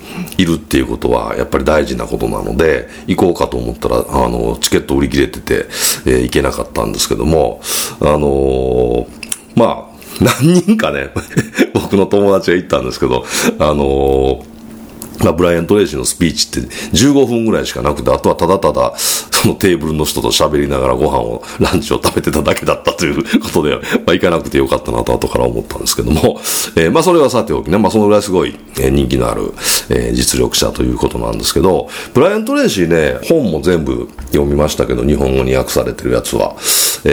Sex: male